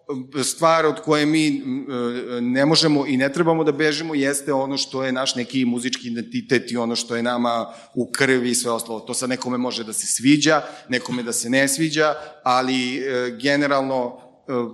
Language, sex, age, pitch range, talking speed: Croatian, male, 40-59, 130-150 Hz, 175 wpm